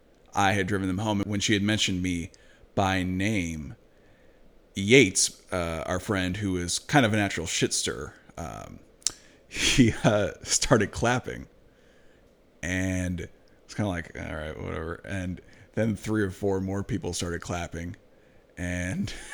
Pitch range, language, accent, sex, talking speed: 90-105 Hz, English, American, male, 145 wpm